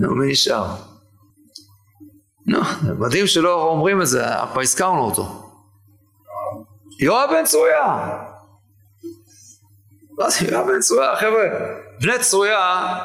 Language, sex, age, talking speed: Hebrew, male, 40-59, 90 wpm